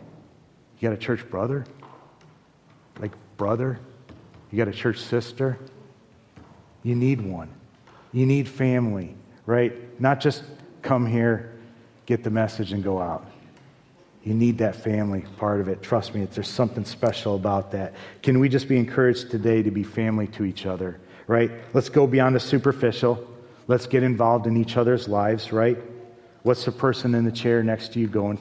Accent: American